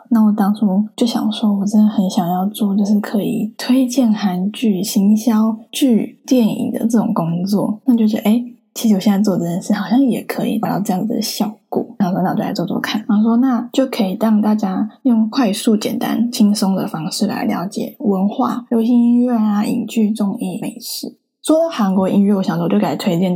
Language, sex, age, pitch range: Chinese, female, 10-29, 200-240 Hz